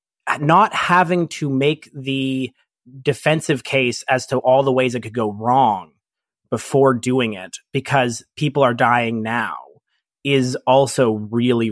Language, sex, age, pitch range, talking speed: English, male, 30-49, 115-140 Hz, 140 wpm